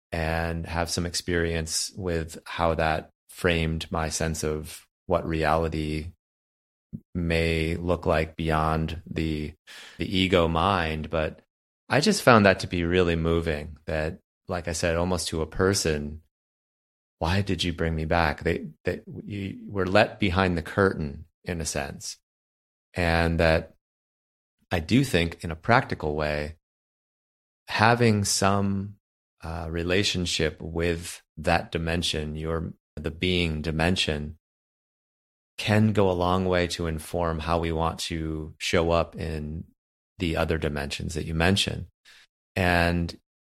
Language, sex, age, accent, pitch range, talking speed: English, male, 30-49, American, 80-90 Hz, 135 wpm